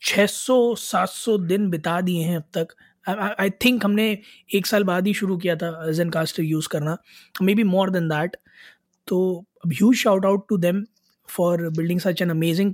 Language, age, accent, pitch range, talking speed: Hindi, 20-39, native, 175-200 Hz, 180 wpm